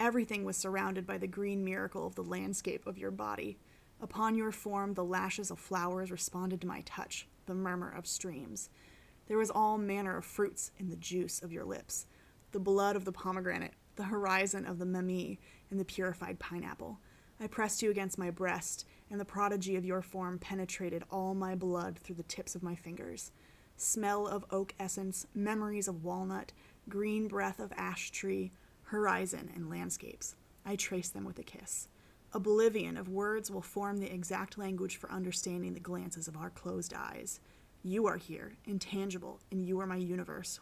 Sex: female